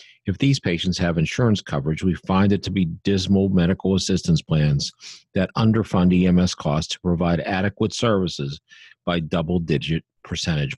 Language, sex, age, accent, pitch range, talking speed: English, male, 50-69, American, 80-100 Hz, 145 wpm